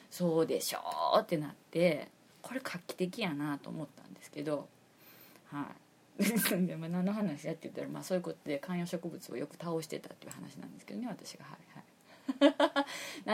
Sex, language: female, Japanese